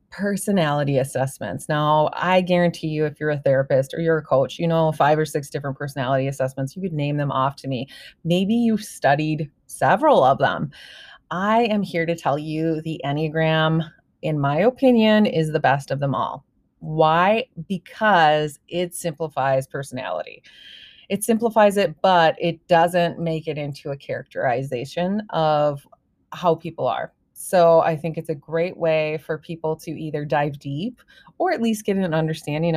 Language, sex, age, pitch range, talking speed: English, female, 30-49, 150-175 Hz, 165 wpm